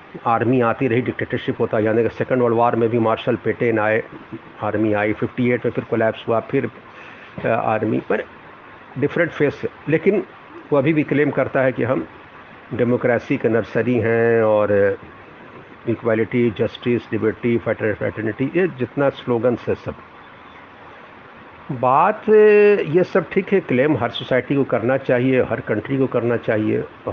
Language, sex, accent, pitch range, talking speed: Hindi, male, native, 110-135 Hz, 155 wpm